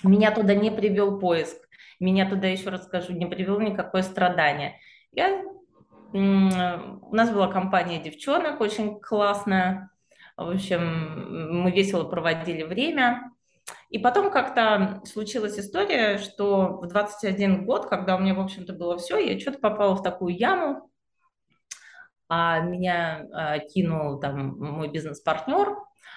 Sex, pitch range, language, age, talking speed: female, 155-210 Hz, Russian, 20-39, 125 wpm